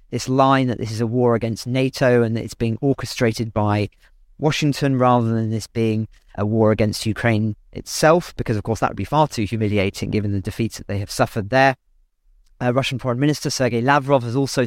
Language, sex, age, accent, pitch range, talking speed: English, male, 40-59, British, 110-135 Hz, 205 wpm